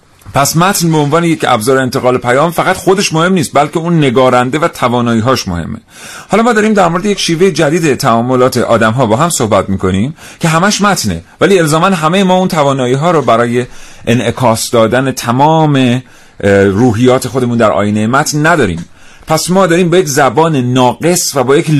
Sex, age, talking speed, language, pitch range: male, 40-59, 175 wpm, Persian, 115-165 Hz